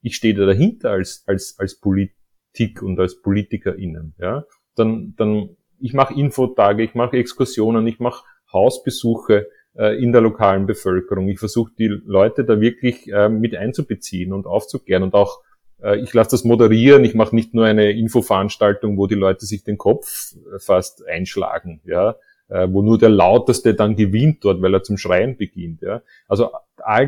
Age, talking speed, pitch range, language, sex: 30-49, 170 wpm, 100-125 Hz, German, male